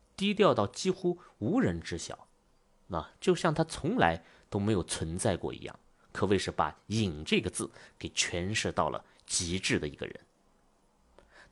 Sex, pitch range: male, 90-135 Hz